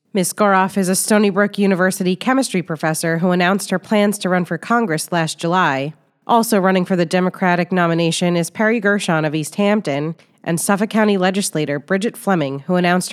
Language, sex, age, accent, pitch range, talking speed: English, female, 30-49, American, 165-195 Hz, 180 wpm